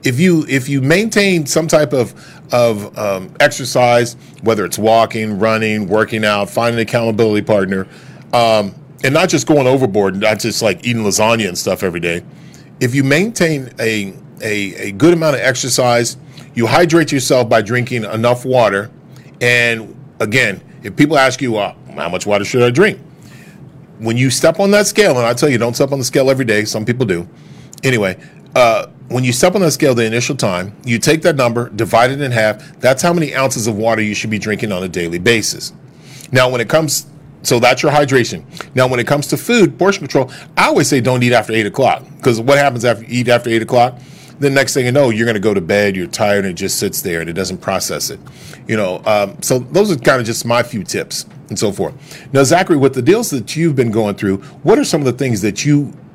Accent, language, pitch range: American, English, 110-145 Hz